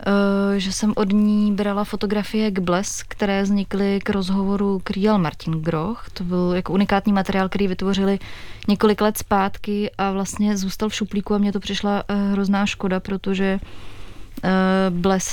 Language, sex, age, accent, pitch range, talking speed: Czech, female, 20-39, native, 190-200 Hz, 150 wpm